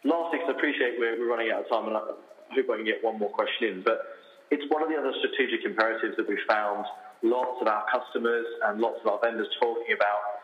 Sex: male